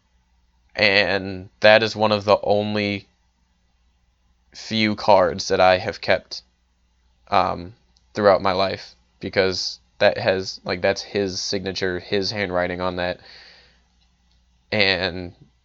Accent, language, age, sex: American, English, 20-39, male